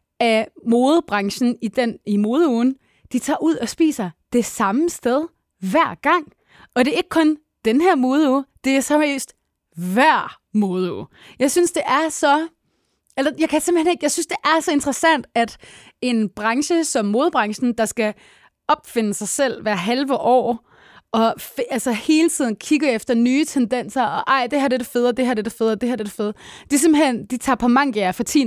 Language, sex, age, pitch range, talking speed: Danish, female, 20-39, 225-295 Hz, 205 wpm